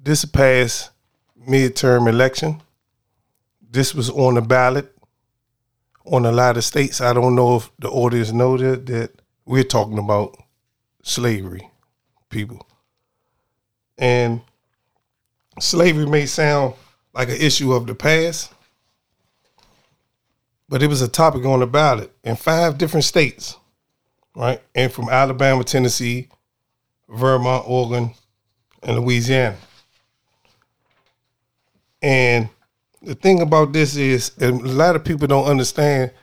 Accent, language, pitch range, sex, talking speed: American, English, 120-135 Hz, male, 115 wpm